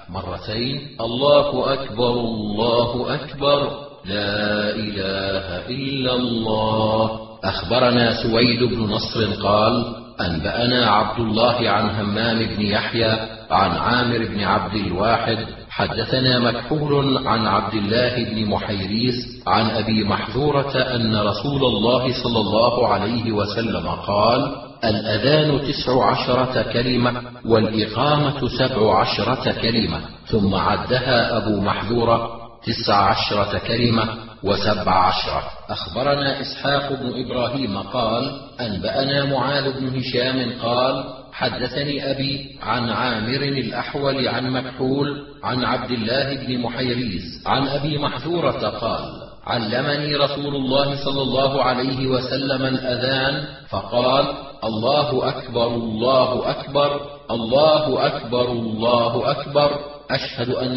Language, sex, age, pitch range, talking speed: Arabic, male, 40-59, 110-135 Hz, 105 wpm